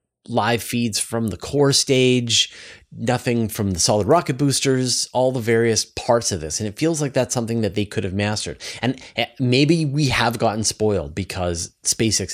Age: 30-49